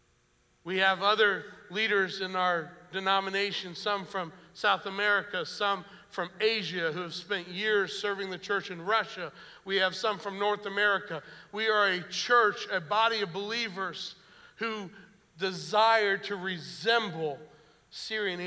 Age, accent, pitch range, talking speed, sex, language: 60-79, American, 175-205 Hz, 135 wpm, male, English